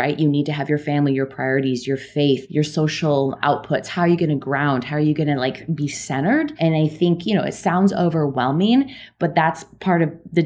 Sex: female